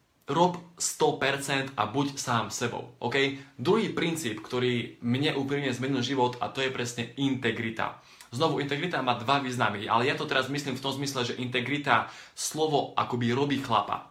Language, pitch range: Slovak, 120-145 Hz